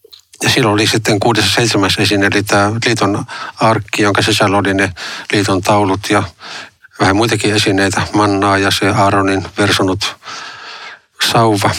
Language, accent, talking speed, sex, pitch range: Finnish, native, 125 wpm, male, 100-115 Hz